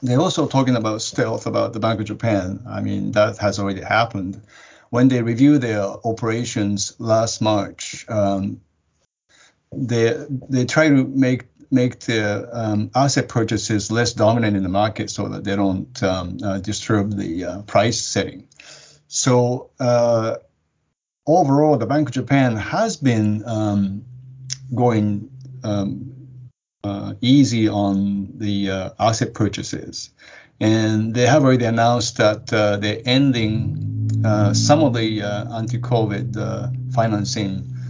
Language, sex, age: English, male, 50-69